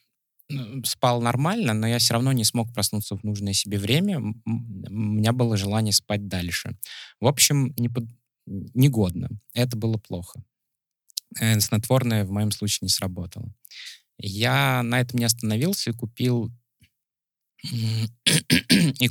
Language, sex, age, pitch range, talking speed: Russian, male, 20-39, 105-125 Hz, 130 wpm